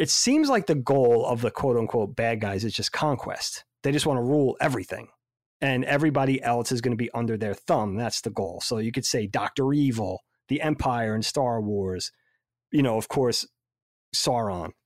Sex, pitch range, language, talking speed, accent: male, 110-140 Hz, English, 195 wpm, American